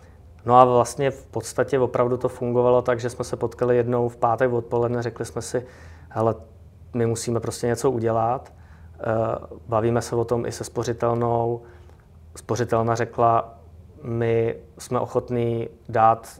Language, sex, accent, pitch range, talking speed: Czech, male, native, 110-120 Hz, 145 wpm